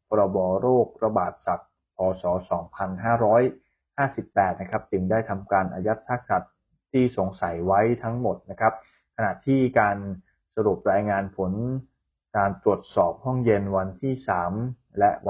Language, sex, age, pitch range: Thai, male, 20-39, 95-115 Hz